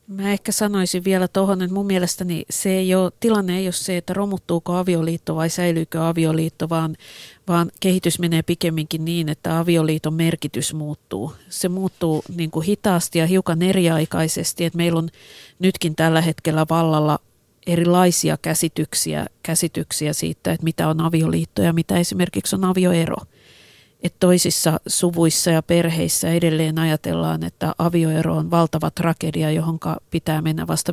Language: Finnish